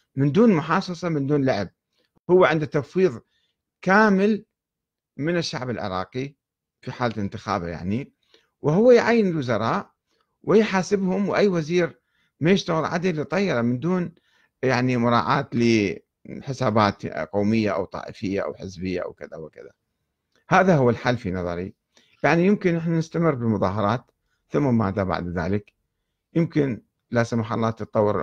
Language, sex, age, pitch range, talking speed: Arabic, male, 50-69, 95-140 Hz, 125 wpm